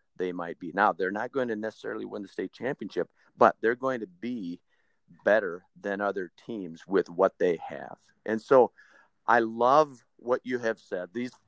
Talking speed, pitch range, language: 185 wpm, 100-120 Hz, English